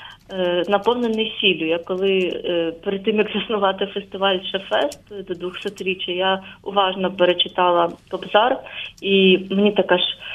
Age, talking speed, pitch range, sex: 20-39, 115 wpm, 180-210 Hz, female